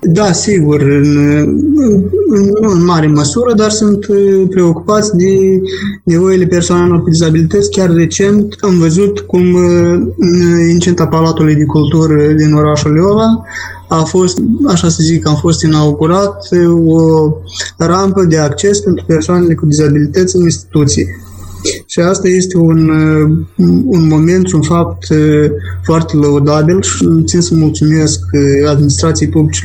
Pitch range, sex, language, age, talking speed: 145-175 Hz, male, Romanian, 20-39, 130 wpm